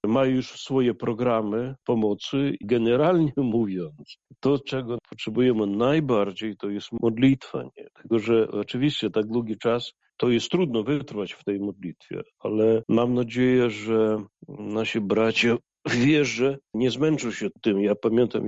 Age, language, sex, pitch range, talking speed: 40-59, Polish, male, 105-125 Hz, 135 wpm